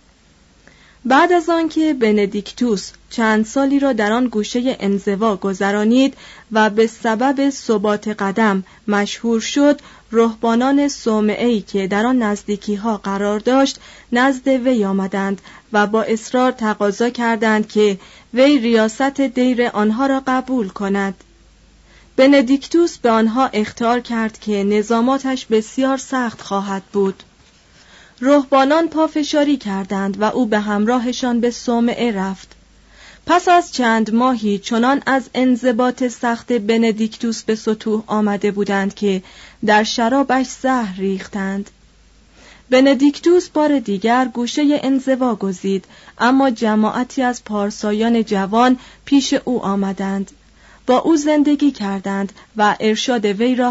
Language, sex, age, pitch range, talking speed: Persian, female, 30-49, 210-260 Hz, 115 wpm